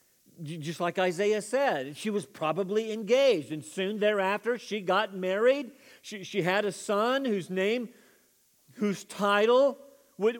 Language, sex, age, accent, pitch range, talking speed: English, male, 50-69, American, 190-245 Hz, 140 wpm